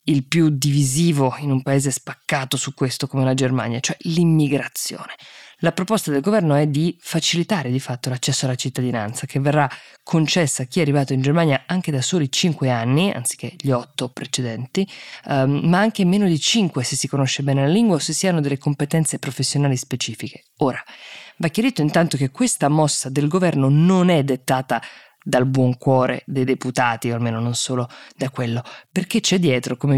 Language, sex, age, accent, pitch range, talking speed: Italian, female, 20-39, native, 130-170 Hz, 180 wpm